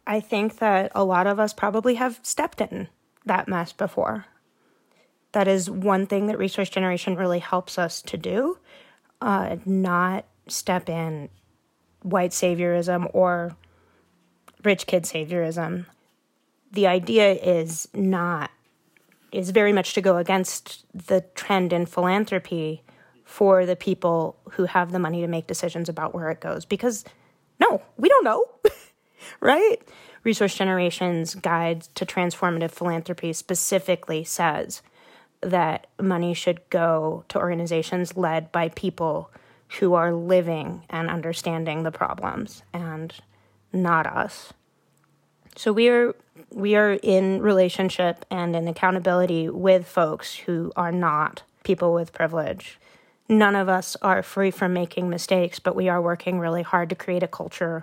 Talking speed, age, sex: 140 wpm, 30-49, female